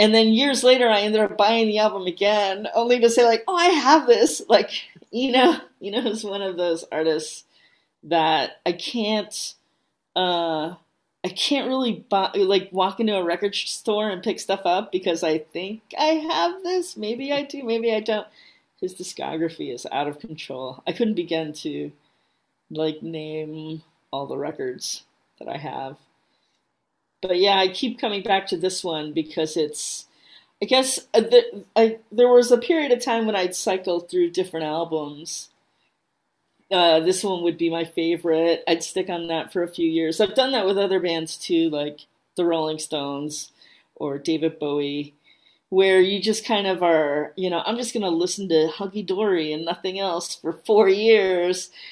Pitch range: 165-215 Hz